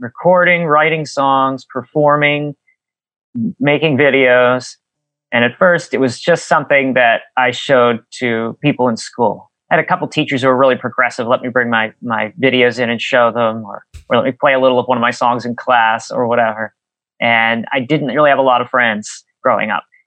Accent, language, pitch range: American, English, 120-155 Hz